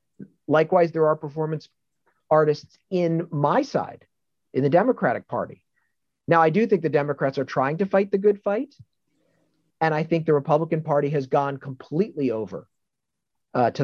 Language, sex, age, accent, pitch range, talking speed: English, male, 40-59, American, 125-155 Hz, 160 wpm